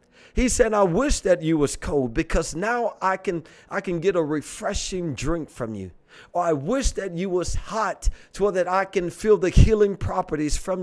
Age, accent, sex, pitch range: 40-59, American, male, 170-210 Hz